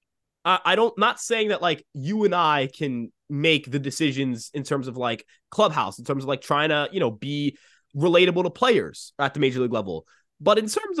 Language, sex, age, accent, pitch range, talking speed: English, male, 20-39, American, 140-205 Hz, 205 wpm